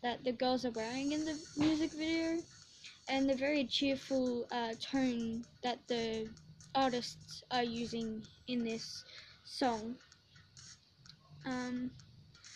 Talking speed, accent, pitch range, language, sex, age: 115 wpm, Australian, 235-285 Hz, English, female, 10-29